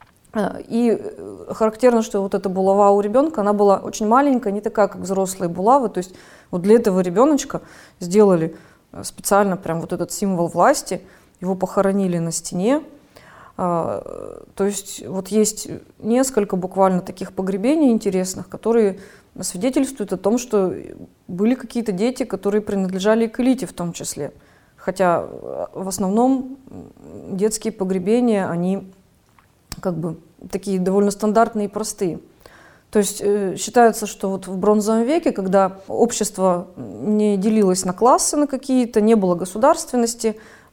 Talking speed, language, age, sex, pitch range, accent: 135 wpm, Russian, 30-49, female, 190-230 Hz, native